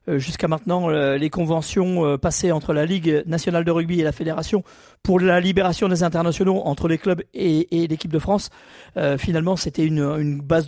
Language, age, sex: French, 40-59, male